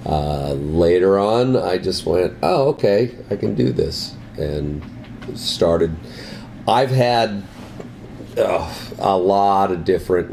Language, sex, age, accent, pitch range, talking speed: English, male, 40-59, American, 85-115 Hz, 120 wpm